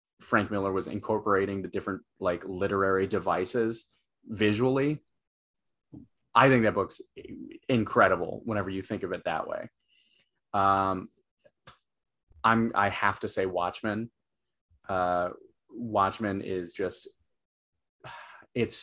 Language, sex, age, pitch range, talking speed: English, male, 20-39, 95-115 Hz, 110 wpm